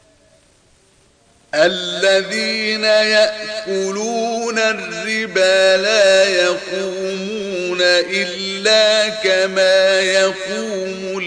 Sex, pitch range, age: male, 180-195 Hz, 40-59